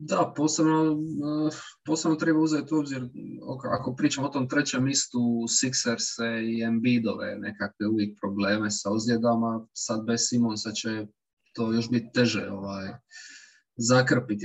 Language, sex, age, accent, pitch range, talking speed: English, male, 20-39, Serbian, 115-145 Hz, 130 wpm